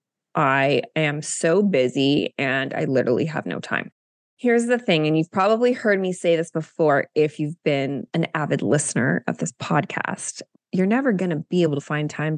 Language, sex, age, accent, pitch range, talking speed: English, female, 20-39, American, 155-205 Hz, 190 wpm